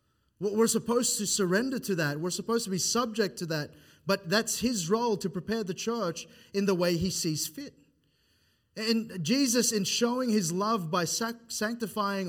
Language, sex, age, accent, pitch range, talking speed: English, male, 30-49, Australian, 145-205 Hz, 170 wpm